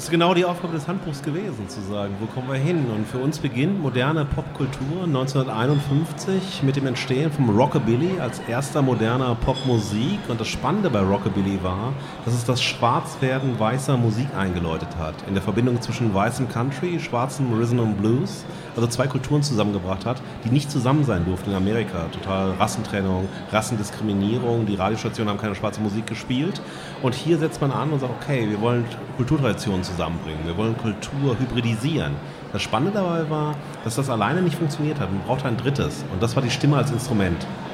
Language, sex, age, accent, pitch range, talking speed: German, male, 40-59, German, 100-135 Hz, 180 wpm